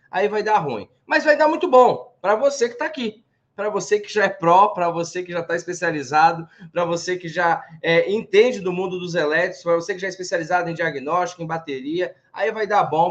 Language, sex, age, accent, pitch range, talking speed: Portuguese, male, 20-39, Brazilian, 160-220 Hz, 230 wpm